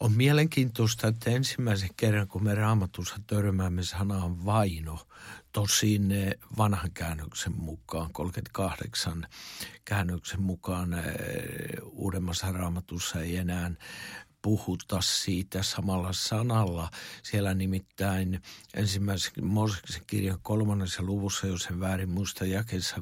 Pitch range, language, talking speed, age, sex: 95-115 Hz, Finnish, 100 wpm, 60-79, male